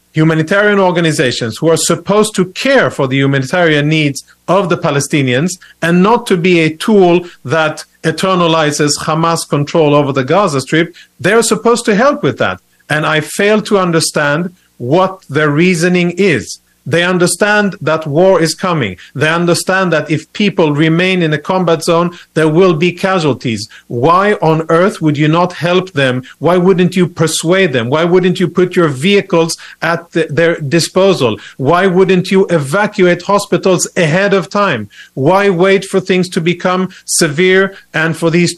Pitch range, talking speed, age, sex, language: 155-190 Hz, 160 wpm, 40-59, male, English